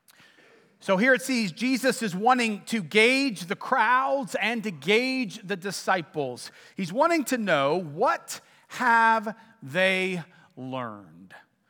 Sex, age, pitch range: male, 40-59, 200-270 Hz